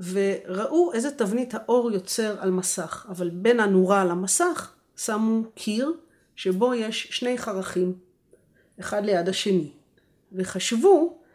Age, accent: 30-49, native